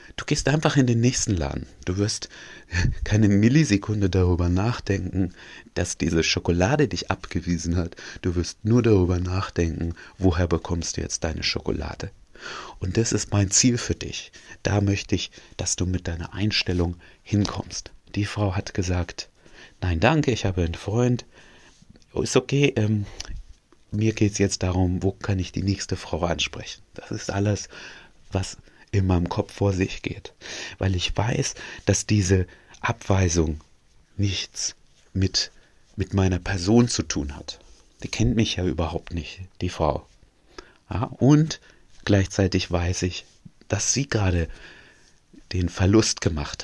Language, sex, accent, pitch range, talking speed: German, male, German, 90-105 Hz, 145 wpm